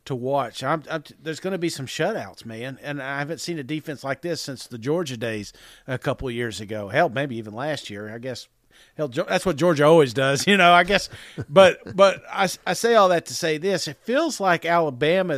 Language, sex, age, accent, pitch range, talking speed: English, male, 50-69, American, 135-180 Hz, 230 wpm